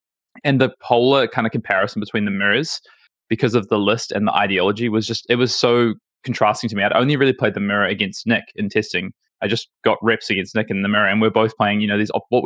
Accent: Australian